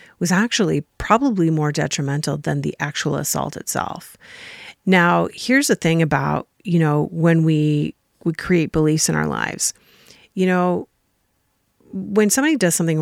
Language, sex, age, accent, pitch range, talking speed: English, female, 40-59, American, 160-205 Hz, 145 wpm